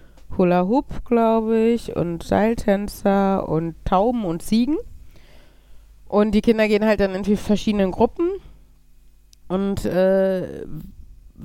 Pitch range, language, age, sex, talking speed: 170-210 Hz, German, 30-49, female, 110 wpm